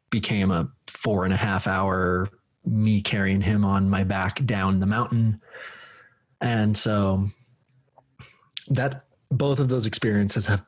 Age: 20-39